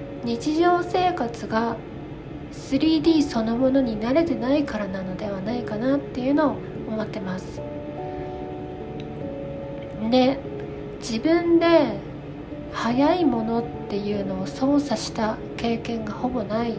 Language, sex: Japanese, female